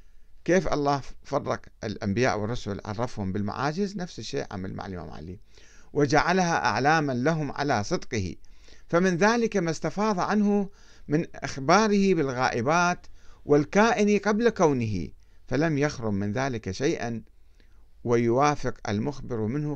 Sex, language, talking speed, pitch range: male, Arabic, 110 wpm, 110-170 Hz